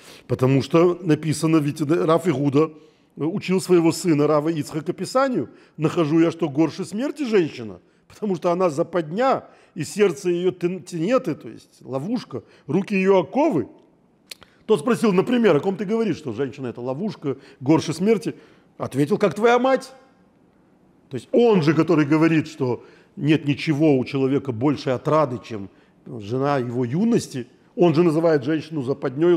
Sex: male